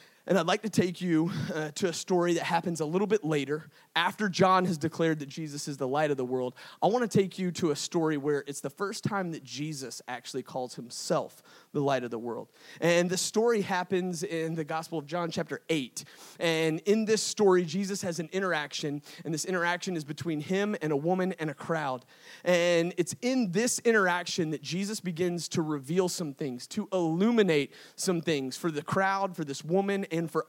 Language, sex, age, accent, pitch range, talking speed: English, male, 30-49, American, 145-180 Hz, 210 wpm